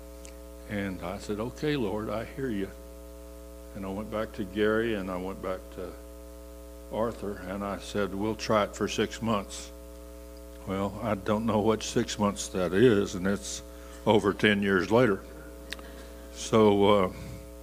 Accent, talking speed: American, 155 wpm